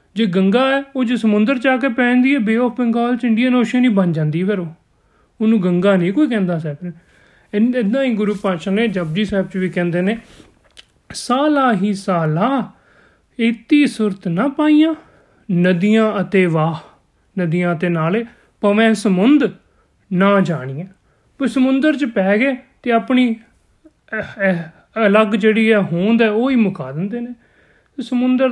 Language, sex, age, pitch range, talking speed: Punjabi, male, 30-49, 175-235 Hz, 125 wpm